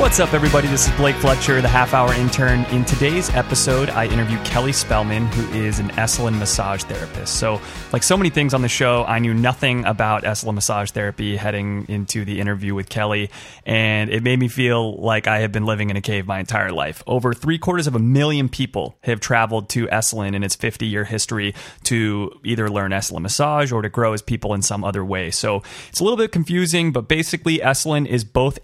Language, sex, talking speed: English, male, 205 wpm